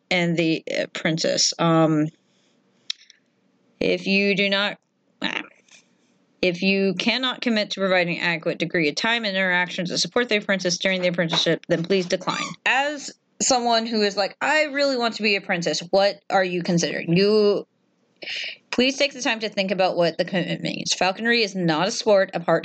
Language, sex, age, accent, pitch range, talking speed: English, female, 30-49, American, 165-205 Hz, 175 wpm